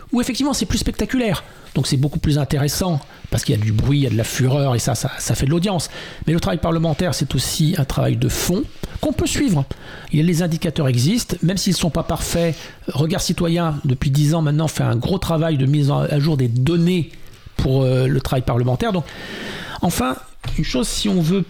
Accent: French